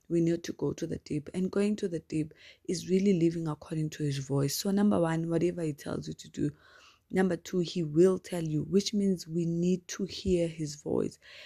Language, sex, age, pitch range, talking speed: English, female, 20-39, 155-195 Hz, 220 wpm